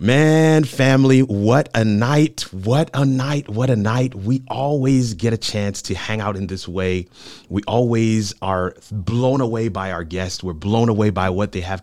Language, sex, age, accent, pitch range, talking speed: English, male, 30-49, American, 95-115 Hz, 190 wpm